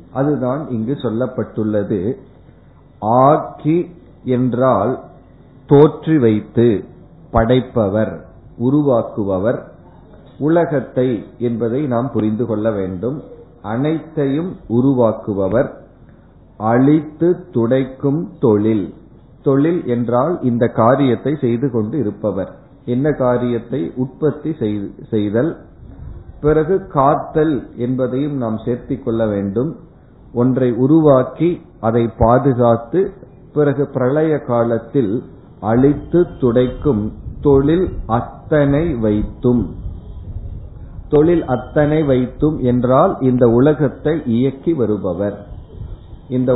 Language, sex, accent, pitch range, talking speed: Tamil, male, native, 110-145 Hz, 70 wpm